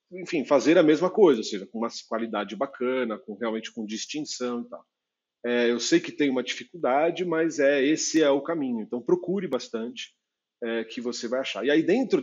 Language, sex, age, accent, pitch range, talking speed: Portuguese, male, 40-59, Brazilian, 115-180 Hz, 200 wpm